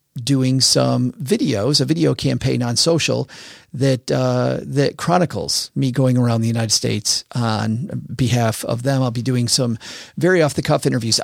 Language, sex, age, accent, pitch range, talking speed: English, male, 50-69, American, 115-140 Hz, 165 wpm